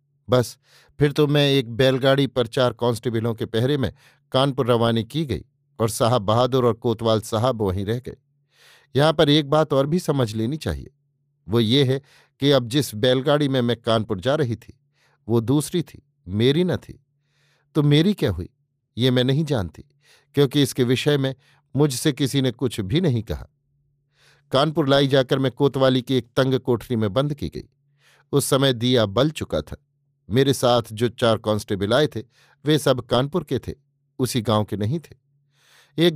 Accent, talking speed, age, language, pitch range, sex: native, 180 wpm, 50-69, Hindi, 120-145 Hz, male